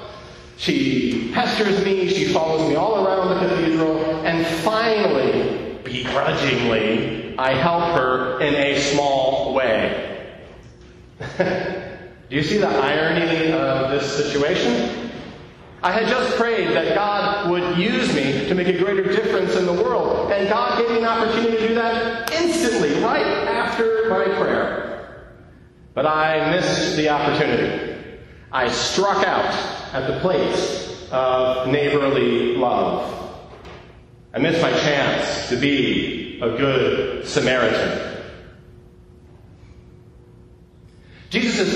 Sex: male